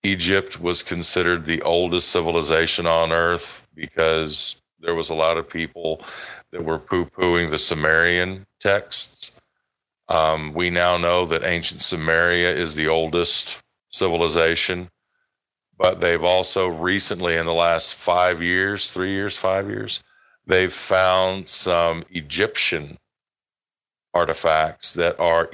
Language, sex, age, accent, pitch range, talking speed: English, male, 50-69, American, 85-95 Hz, 120 wpm